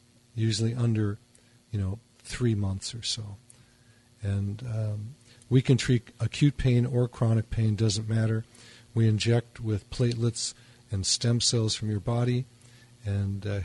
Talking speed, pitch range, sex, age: 140 wpm, 110-120 Hz, male, 50-69